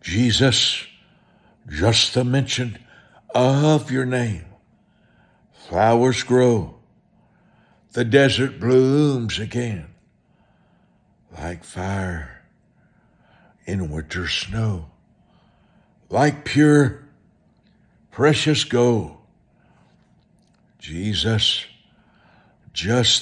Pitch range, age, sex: 85-125 Hz, 60-79, male